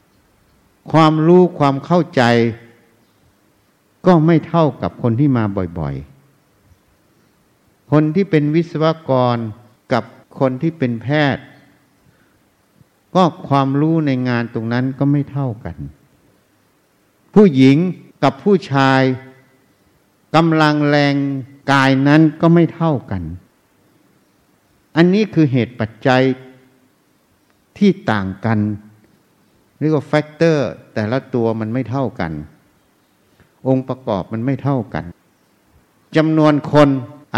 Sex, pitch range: male, 115-150 Hz